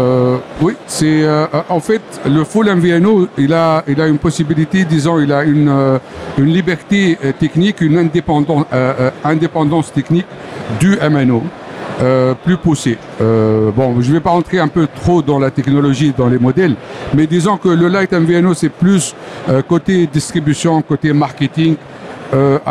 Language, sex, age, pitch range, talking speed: Arabic, male, 60-79, 140-170 Hz, 160 wpm